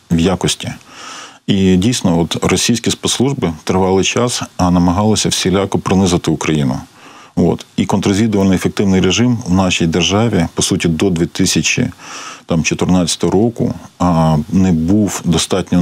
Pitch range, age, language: 85-100 Hz, 40-59, Ukrainian